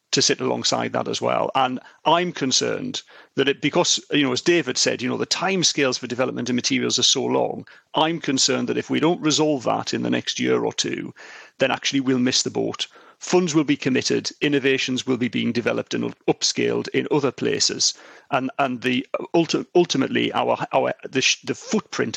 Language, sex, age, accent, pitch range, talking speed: English, male, 40-59, British, 125-150 Hz, 190 wpm